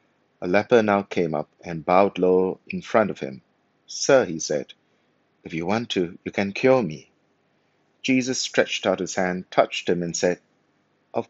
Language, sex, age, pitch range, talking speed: English, male, 50-69, 90-115 Hz, 175 wpm